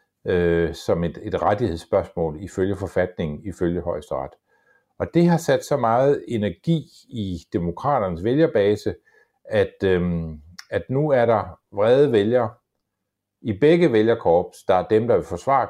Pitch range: 95-140 Hz